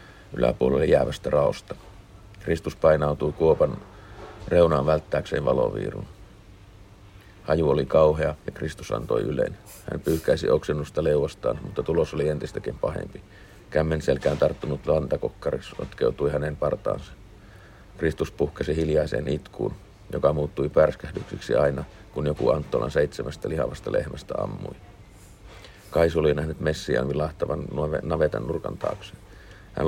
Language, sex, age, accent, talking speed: Finnish, male, 50-69, native, 110 wpm